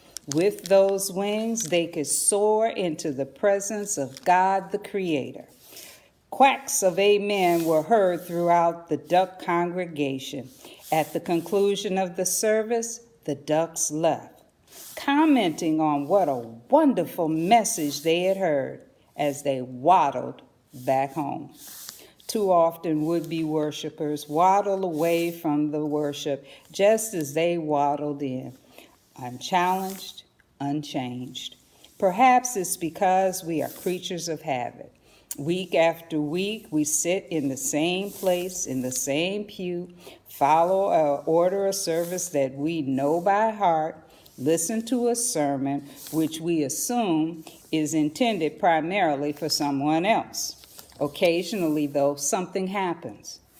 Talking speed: 125 wpm